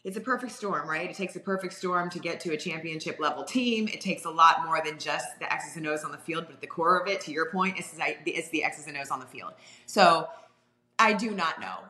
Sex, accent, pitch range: female, American, 150-180 Hz